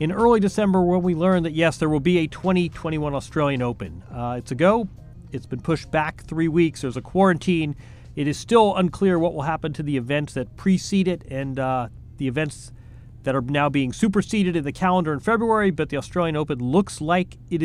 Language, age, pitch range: English, 40-59, 135-180 Hz